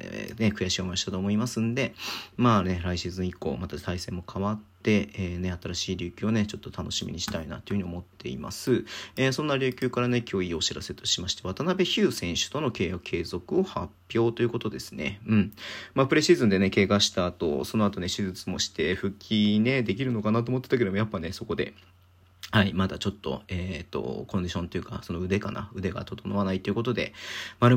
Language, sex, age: Japanese, male, 40-59